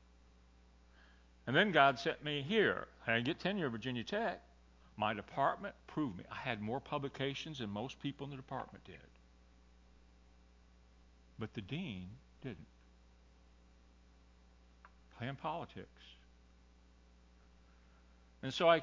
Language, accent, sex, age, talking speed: English, American, male, 60-79, 120 wpm